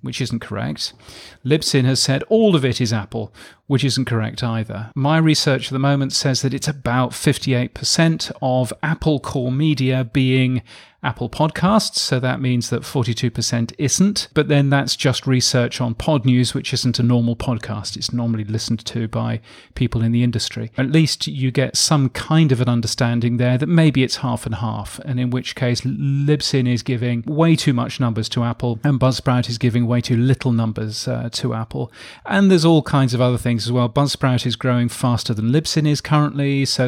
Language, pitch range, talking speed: English, 120-145 Hz, 190 wpm